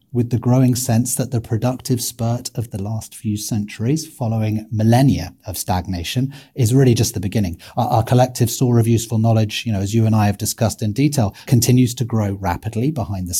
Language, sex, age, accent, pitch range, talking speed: English, male, 30-49, British, 110-130 Hz, 200 wpm